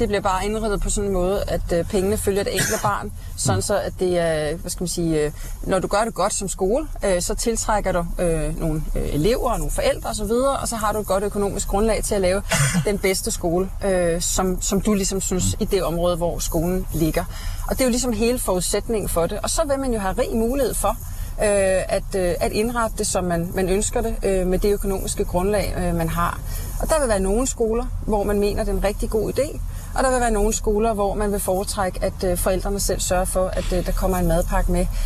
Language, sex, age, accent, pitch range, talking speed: Danish, female, 30-49, native, 180-210 Hz, 230 wpm